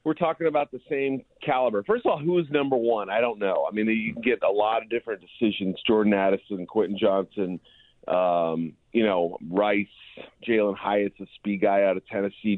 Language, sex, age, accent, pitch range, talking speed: English, male, 40-59, American, 100-140 Hz, 200 wpm